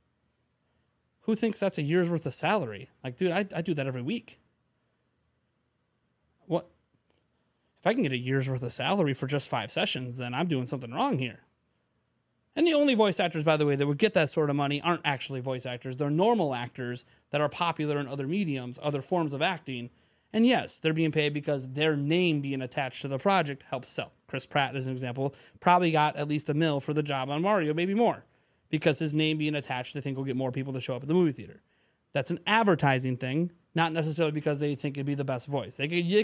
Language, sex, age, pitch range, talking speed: English, male, 30-49, 135-170 Hz, 225 wpm